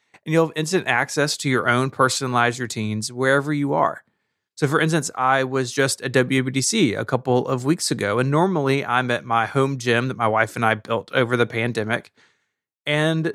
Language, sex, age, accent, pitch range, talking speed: English, male, 30-49, American, 115-145 Hz, 195 wpm